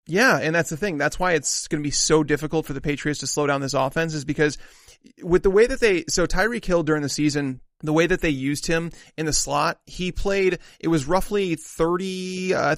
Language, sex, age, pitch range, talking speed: English, male, 30-49, 145-180 Hz, 235 wpm